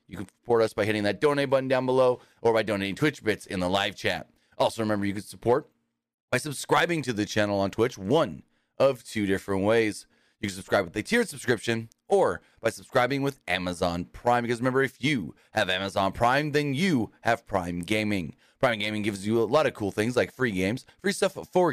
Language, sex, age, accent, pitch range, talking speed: English, male, 30-49, American, 105-145 Hz, 215 wpm